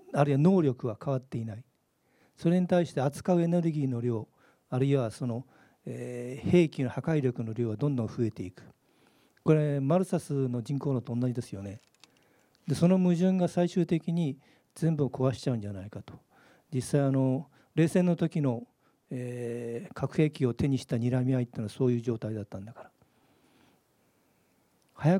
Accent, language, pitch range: native, Japanese, 125-170 Hz